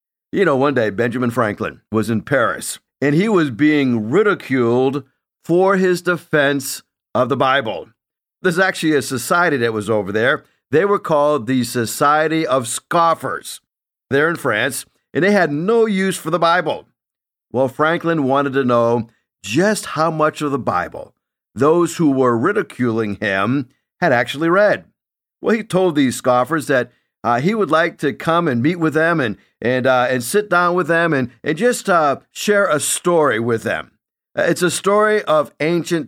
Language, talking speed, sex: English, 170 wpm, male